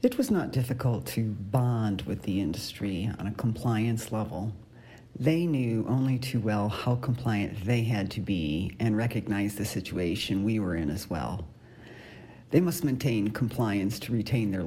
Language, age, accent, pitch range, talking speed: English, 40-59, American, 105-135 Hz, 165 wpm